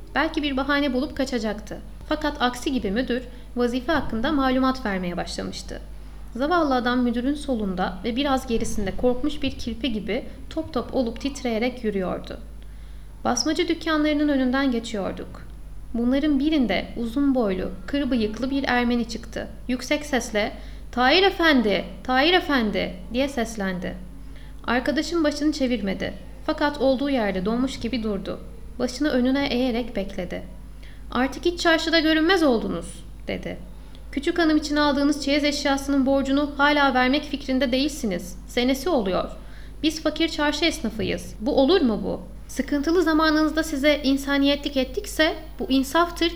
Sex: female